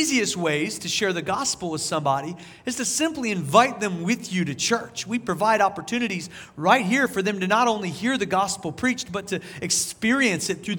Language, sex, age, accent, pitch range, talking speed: English, male, 40-59, American, 135-190 Hz, 200 wpm